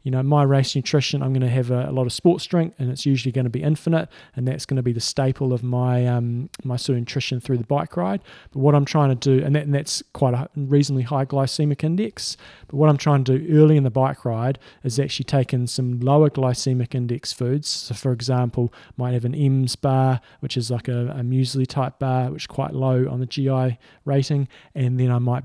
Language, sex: English, male